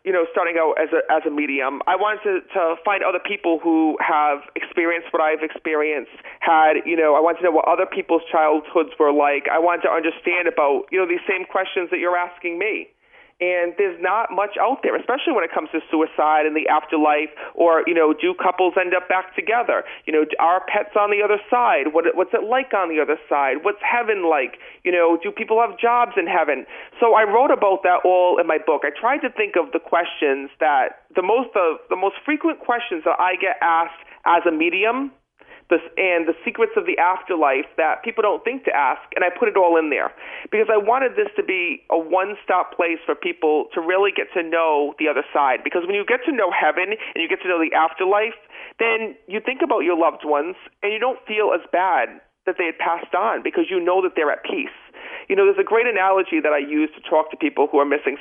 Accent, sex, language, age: American, male, English, 40-59